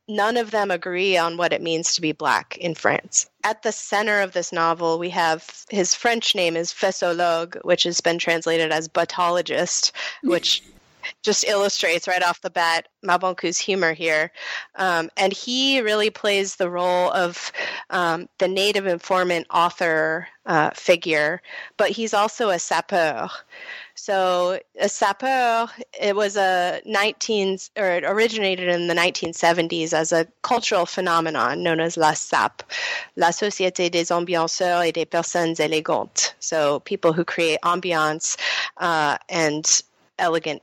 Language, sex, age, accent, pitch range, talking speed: English, female, 30-49, American, 165-200 Hz, 145 wpm